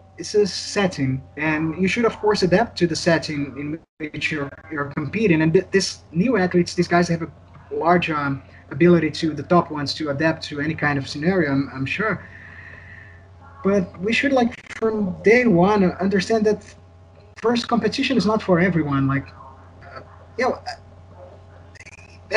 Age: 20-39